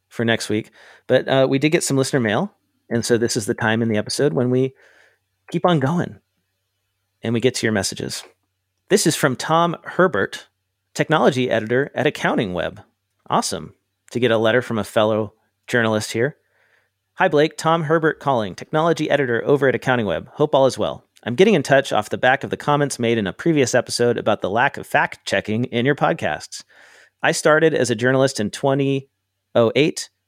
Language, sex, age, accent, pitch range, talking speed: English, male, 40-59, American, 110-145 Hz, 195 wpm